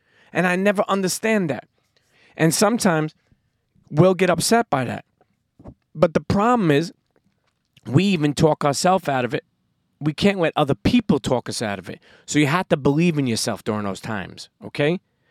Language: English